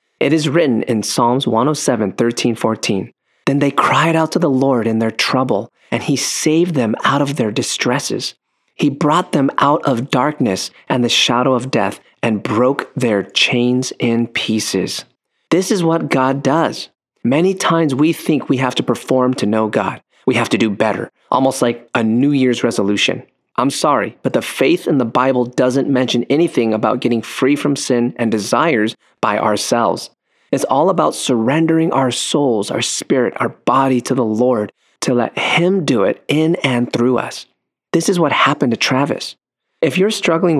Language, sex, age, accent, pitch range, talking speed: English, male, 30-49, American, 120-160 Hz, 180 wpm